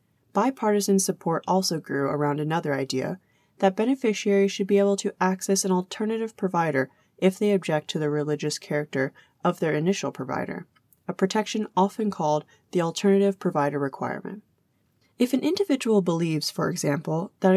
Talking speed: 145 wpm